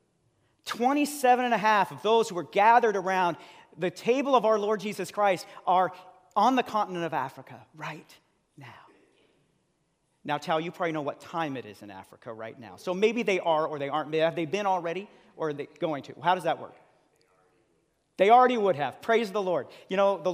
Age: 40-59